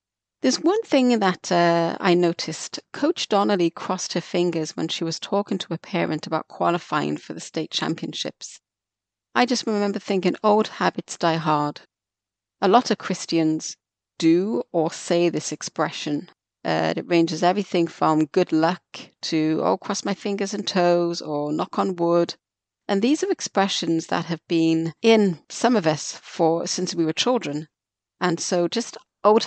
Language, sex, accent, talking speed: English, female, British, 165 wpm